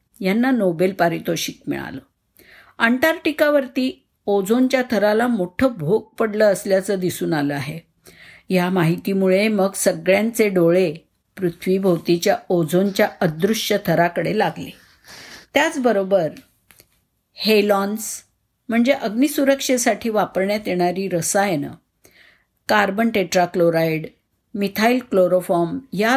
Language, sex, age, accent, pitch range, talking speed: Marathi, female, 50-69, native, 180-230 Hz, 85 wpm